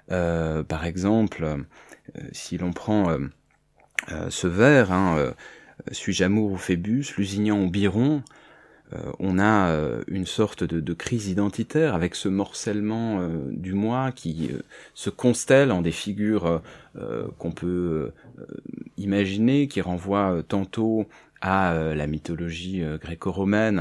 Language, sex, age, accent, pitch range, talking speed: French, male, 30-49, French, 90-115 Hz, 145 wpm